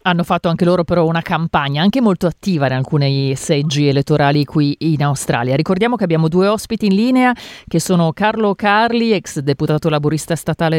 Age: 40-59